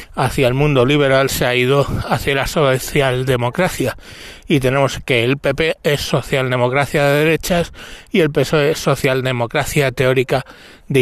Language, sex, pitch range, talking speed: Spanish, male, 120-150 Hz, 140 wpm